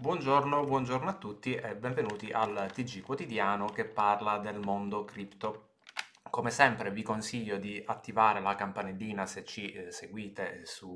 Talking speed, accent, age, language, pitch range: 150 wpm, native, 20-39, Italian, 100-115 Hz